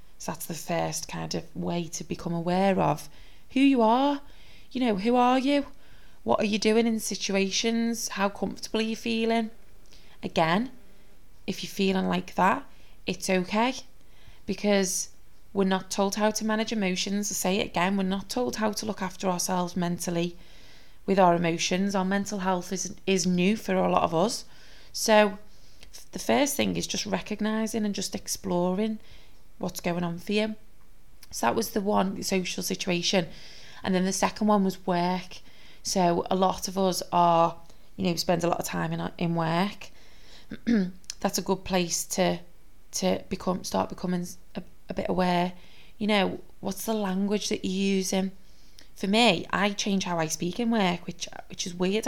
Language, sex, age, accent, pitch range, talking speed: English, female, 20-39, British, 180-220 Hz, 175 wpm